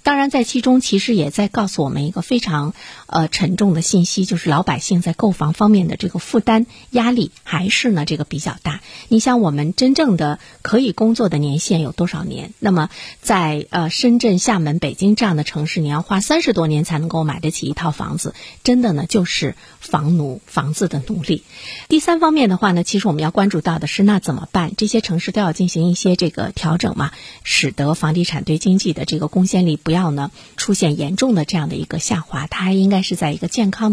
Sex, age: female, 50-69